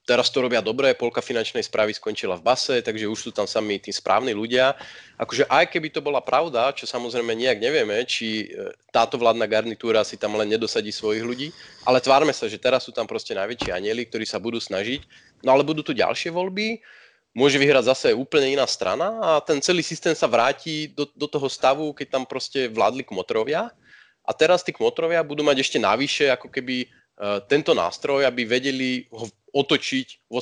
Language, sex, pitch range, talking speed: Slovak, male, 115-155 Hz, 190 wpm